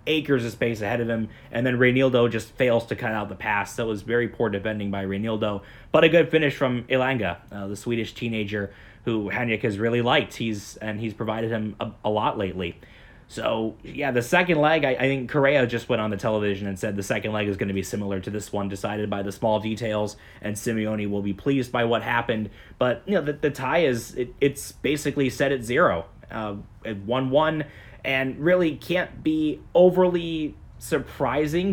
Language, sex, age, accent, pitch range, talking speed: English, male, 20-39, American, 105-135 Hz, 205 wpm